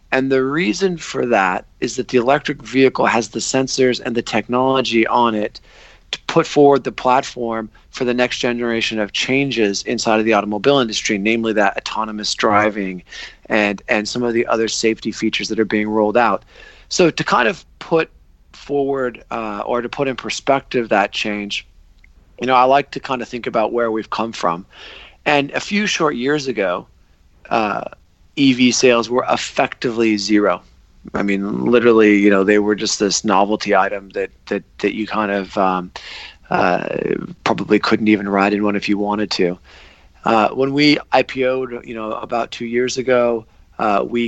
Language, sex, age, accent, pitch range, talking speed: English, male, 40-59, American, 105-125 Hz, 180 wpm